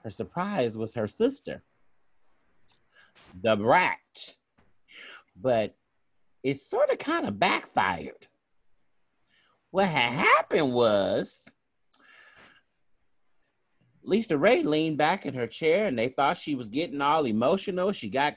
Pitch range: 130-195 Hz